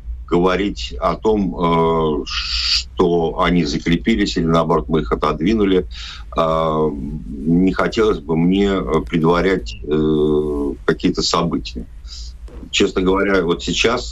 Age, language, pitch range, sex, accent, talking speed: 50-69, Russian, 75-95 Hz, male, native, 95 wpm